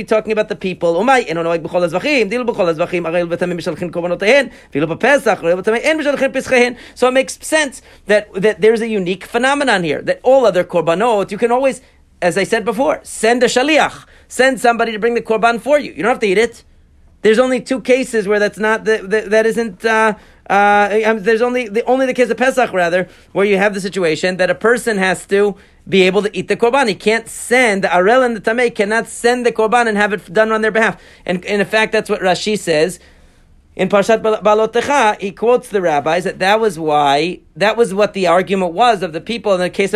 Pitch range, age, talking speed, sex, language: 195-245 Hz, 40-59, 190 wpm, male, English